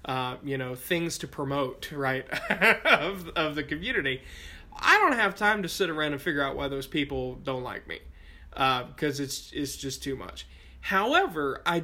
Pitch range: 130-160 Hz